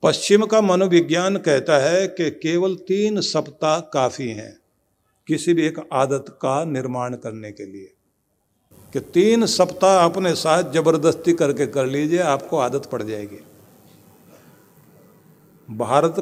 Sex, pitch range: male, 145-185 Hz